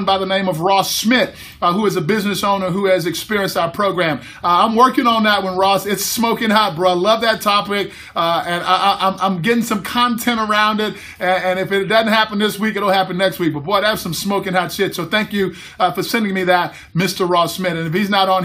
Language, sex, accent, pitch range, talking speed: English, male, American, 185-230 Hz, 235 wpm